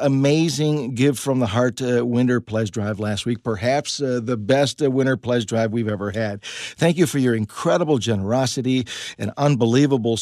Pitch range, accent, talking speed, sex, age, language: 120-145 Hz, American, 175 wpm, male, 50-69, English